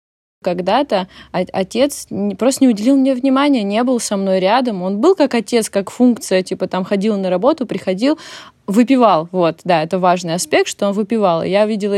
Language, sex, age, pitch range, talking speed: Russian, female, 20-39, 185-230 Hz, 175 wpm